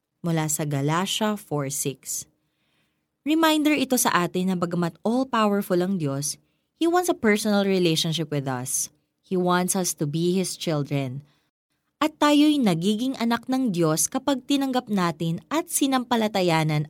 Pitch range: 150-220 Hz